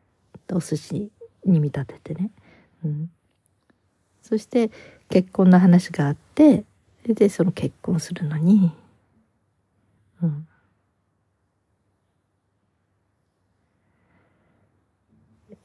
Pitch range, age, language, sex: 140-210 Hz, 40-59, Japanese, female